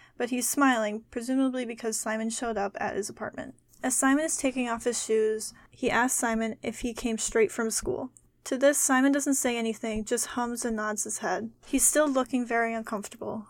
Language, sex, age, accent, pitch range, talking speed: English, female, 10-29, American, 225-255 Hz, 195 wpm